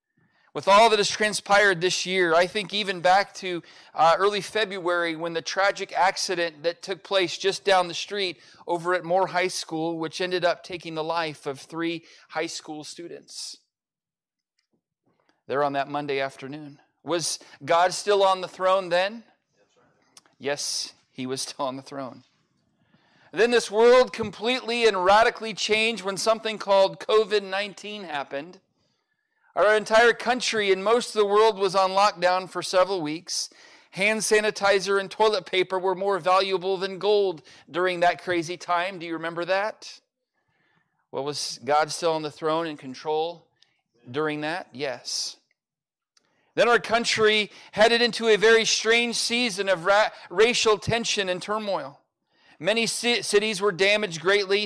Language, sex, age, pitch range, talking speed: English, male, 40-59, 170-215 Hz, 150 wpm